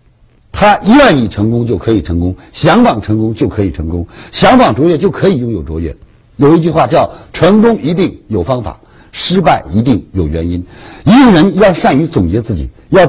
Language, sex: Chinese, male